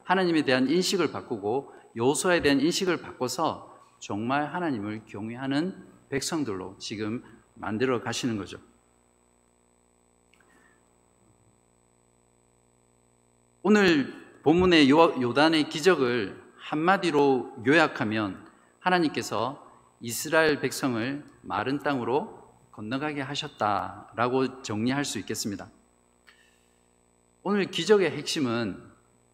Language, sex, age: Korean, male, 50-69